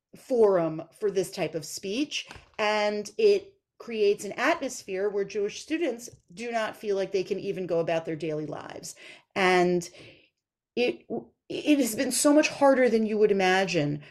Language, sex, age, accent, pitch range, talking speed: English, female, 40-59, American, 175-240 Hz, 160 wpm